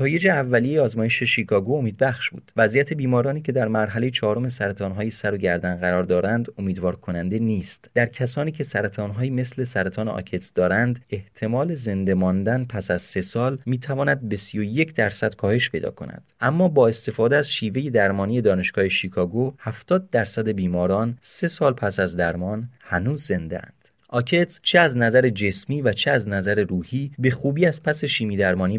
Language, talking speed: Persian, 165 wpm